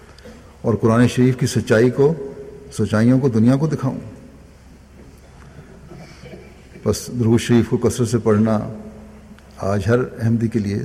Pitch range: 80-120 Hz